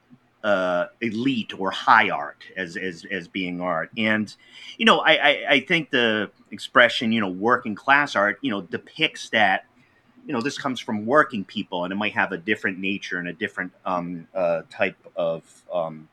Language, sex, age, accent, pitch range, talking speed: English, male, 30-49, American, 100-130 Hz, 185 wpm